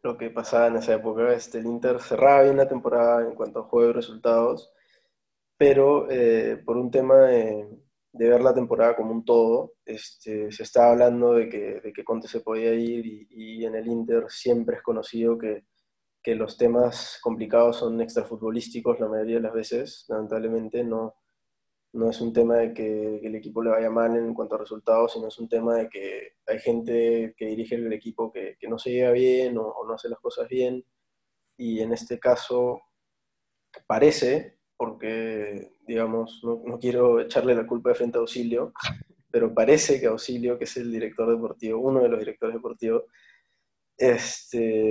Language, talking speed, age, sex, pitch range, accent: Spanish, 185 wpm, 20-39, male, 110-125 Hz, Argentinian